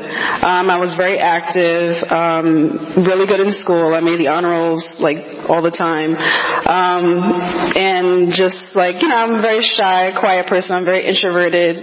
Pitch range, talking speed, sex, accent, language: 170-195 Hz, 170 wpm, female, American, English